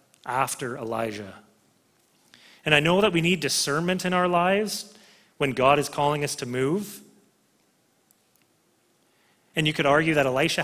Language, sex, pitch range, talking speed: English, male, 130-185 Hz, 140 wpm